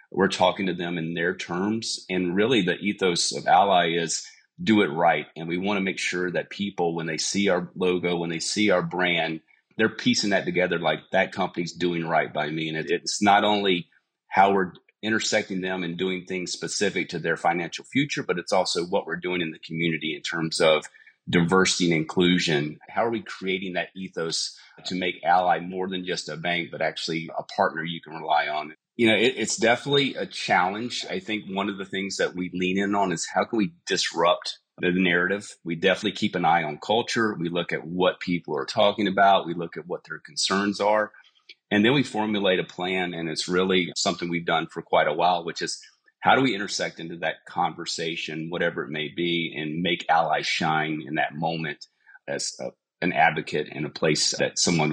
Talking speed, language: 205 wpm, English